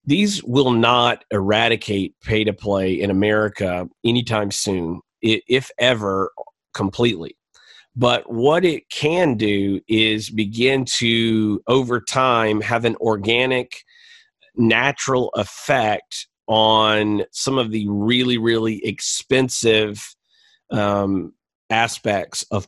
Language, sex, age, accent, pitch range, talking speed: English, male, 40-59, American, 105-115 Hz, 100 wpm